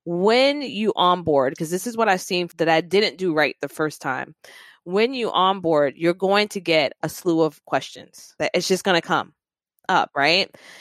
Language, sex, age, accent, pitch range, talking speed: English, female, 20-39, American, 165-200 Hz, 195 wpm